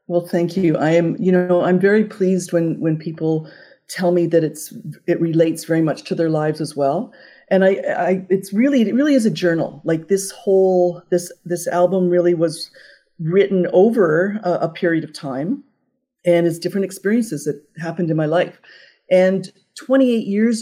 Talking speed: 185 wpm